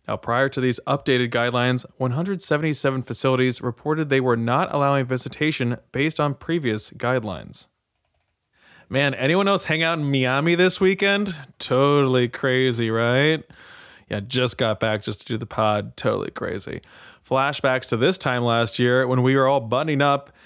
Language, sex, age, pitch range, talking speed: English, male, 20-39, 120-150 Hz, 155 wpm